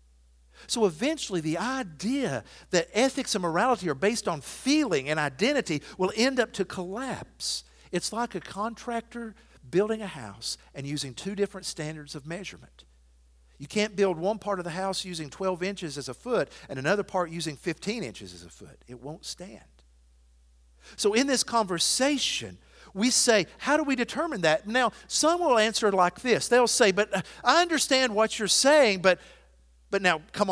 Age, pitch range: 50-69, 150-245 Hz